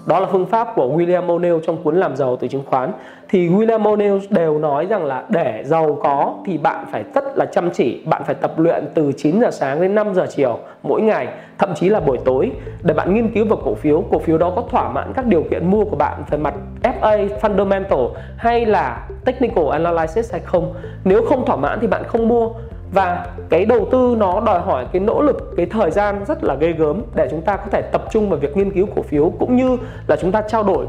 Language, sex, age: Vietnamese, male, 20-39